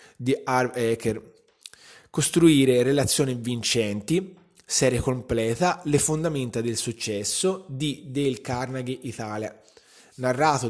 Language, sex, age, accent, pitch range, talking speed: Italian, male, 20-39, native, 115-145 Hz, 95 wpm